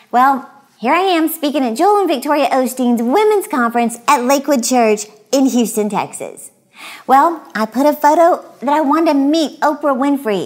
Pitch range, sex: 230-320 Hz, female